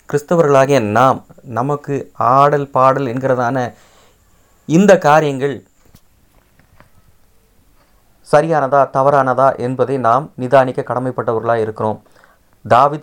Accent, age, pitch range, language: native, 30-49, 115-140 Hz, Tamil